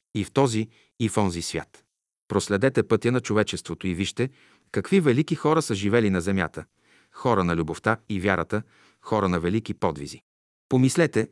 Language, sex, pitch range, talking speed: Bulgarian, male, 90-120 Hz, 160 wpm